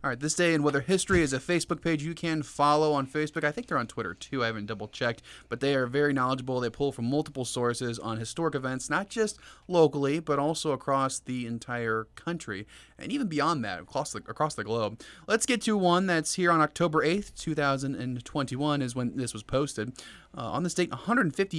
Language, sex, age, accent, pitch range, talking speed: English, male, 20-39, American, 120-155 Hz, 210 wpm